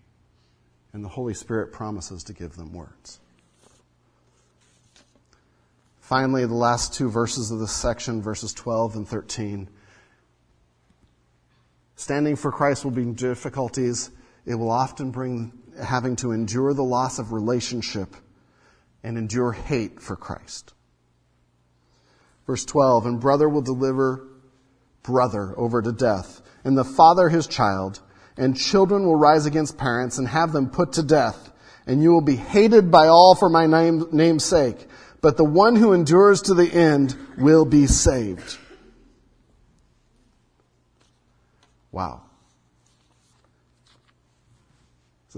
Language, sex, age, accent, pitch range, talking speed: English, male, 40-59, American, 100-135 Hz, 125 wpm